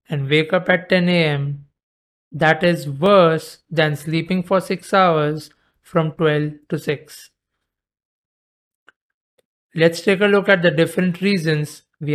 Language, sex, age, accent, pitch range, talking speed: English, male, 50-69, Indian, 150-185 Hz, 135 wpm